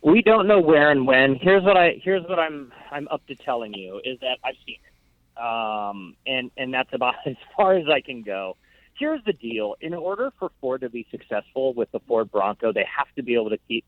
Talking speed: 235 wpm